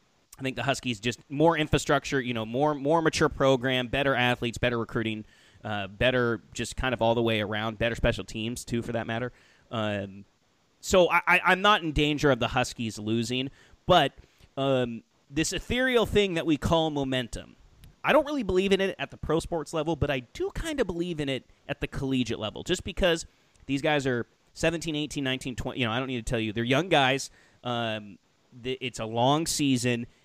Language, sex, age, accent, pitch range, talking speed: English, male, 30-49, American, 115-160 Hz, 200 wpm